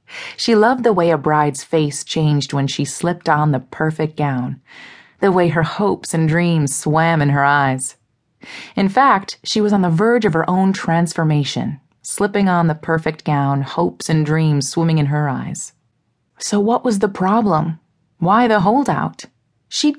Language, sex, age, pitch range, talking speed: English, female, 30-49, 150-195 Hz, 170 wpm